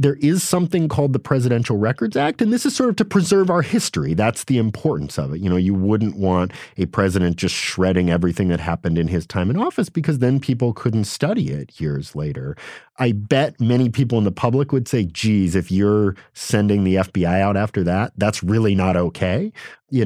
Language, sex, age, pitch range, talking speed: English, male, 40-59, 85-120 Hz, 210 wpm